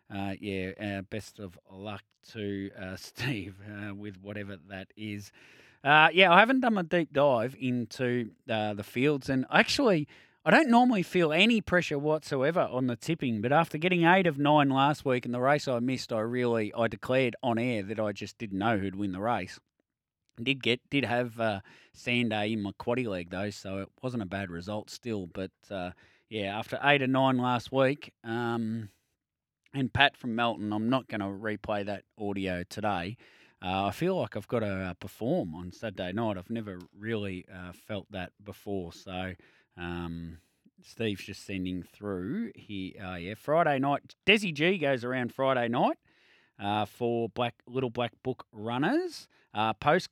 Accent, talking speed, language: Australian, 185 wpm, English